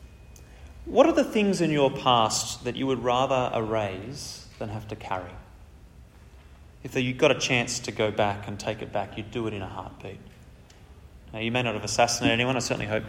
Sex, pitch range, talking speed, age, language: male, 100-120 Hz, 200 wpm, 30-49, English